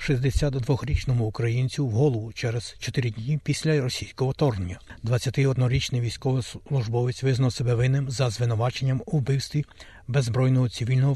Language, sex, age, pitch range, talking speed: Ukrainian, male, 60-79, 115-135 Hz, 120 wpm